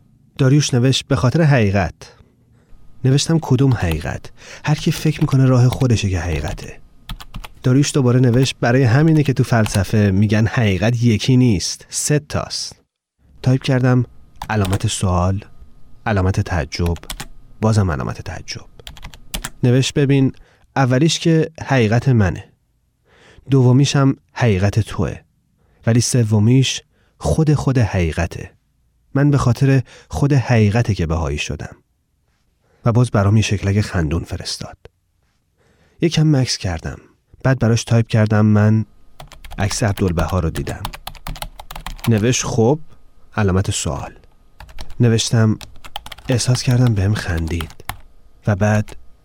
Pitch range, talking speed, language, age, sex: 95-130 Hz, 110 wpm, Persian, 30-49, male